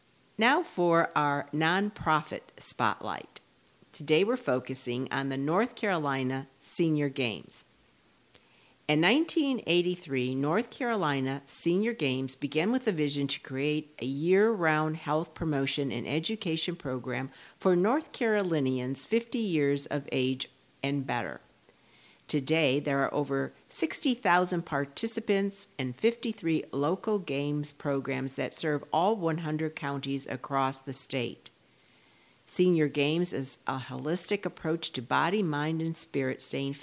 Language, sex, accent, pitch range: English, female, American, 135-180 Hz